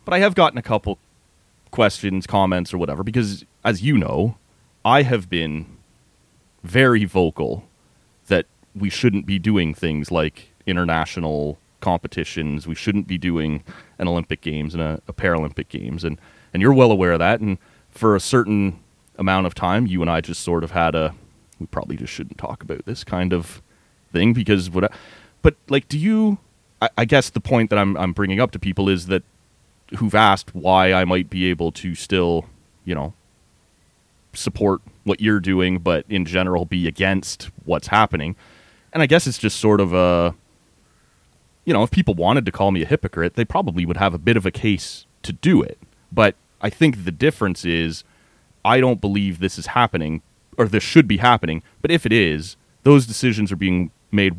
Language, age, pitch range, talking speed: English, 30-49, 85-110 Hz, 190 wpm